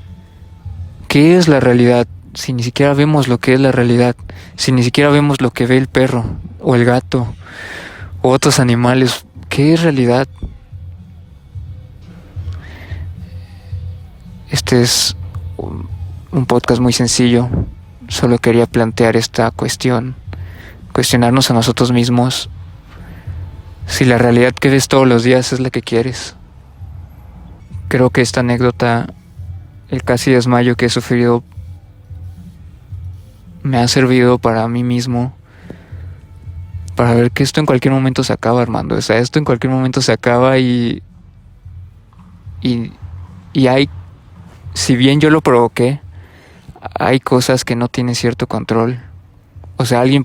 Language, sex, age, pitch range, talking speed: Spanish, male, 20-39, 90-130 Hz, 135 wpm